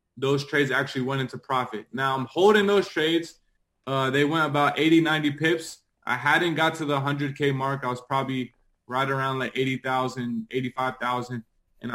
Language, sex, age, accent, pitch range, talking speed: English, male, 20-39, American, 125-145 Hz, 170 wpm